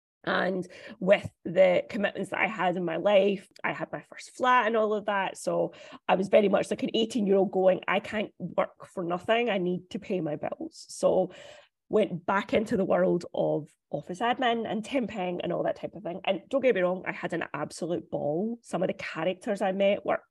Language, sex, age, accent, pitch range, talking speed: English, female, 20-39, British, 180-210 Hz, 220 wpm